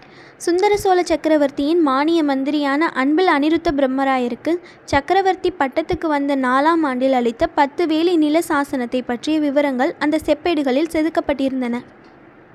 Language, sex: Tamil, female